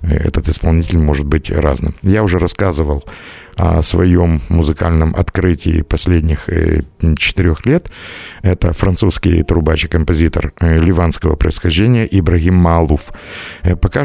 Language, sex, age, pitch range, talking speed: Russian, male, 60-79, 80-95 Hz, 105 wpm